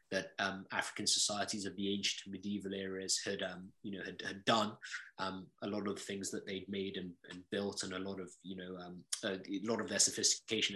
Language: English